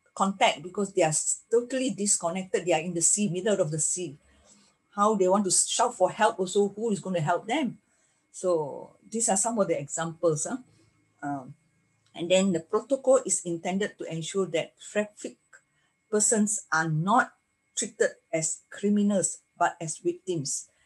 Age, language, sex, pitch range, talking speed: 50-69, English, female, 165-205 Hz, 165 wpm